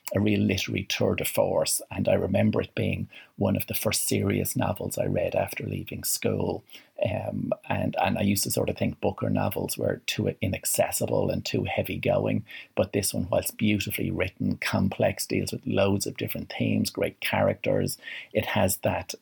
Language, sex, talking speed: English, male, 180 wpm